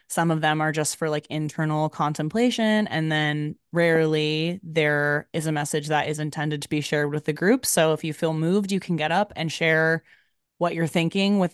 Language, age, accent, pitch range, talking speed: English, 20-39, American, 150-175 Hz, 210 wpm